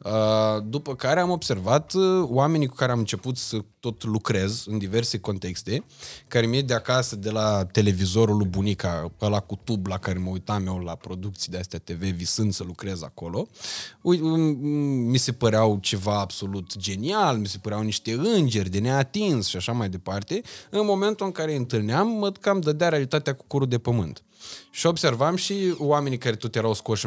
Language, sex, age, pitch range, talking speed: Romanian, male, 20-39, 105-135 Hz, 175 wpm